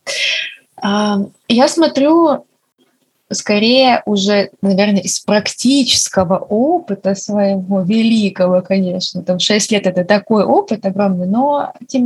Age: 20-39